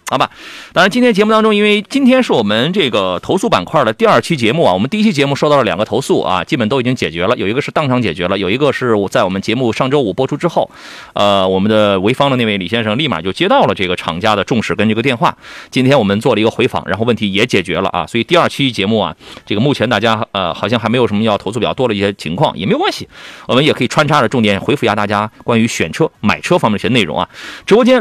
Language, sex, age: Chinese, male, 30-49